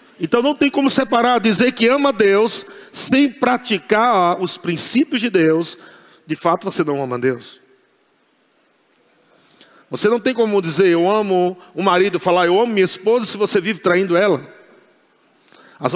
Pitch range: 180-235 Hz